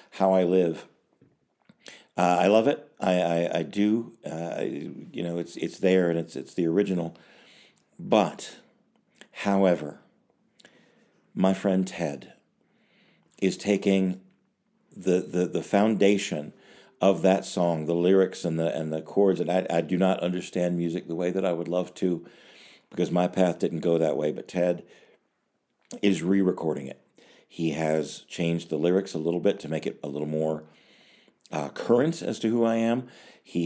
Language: English